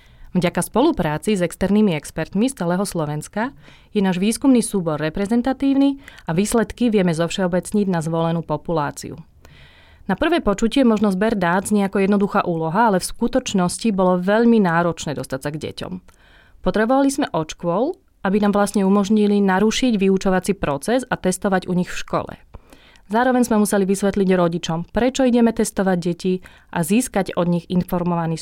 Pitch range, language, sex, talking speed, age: 170-215 Hz, Slovak, female, 145 wpm, 30-49